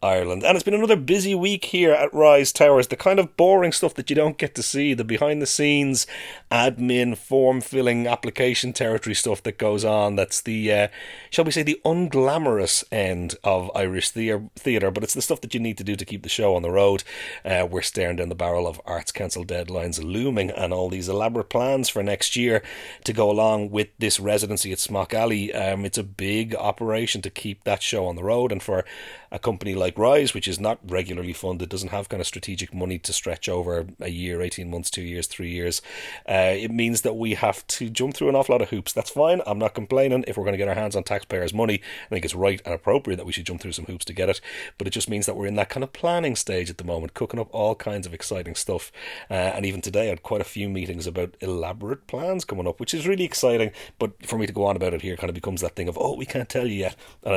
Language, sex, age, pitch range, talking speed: English, male, 30-49, 95-125 Hz, 245 wpm